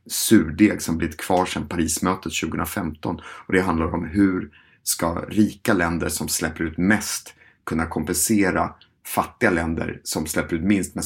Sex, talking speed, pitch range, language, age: male, 145 wpm, 85-100 Hz, Swedish, 30-49